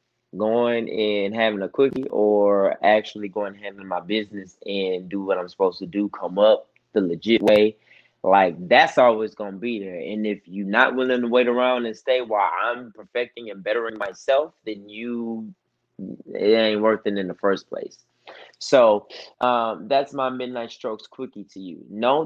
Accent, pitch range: American, 105-130 Hz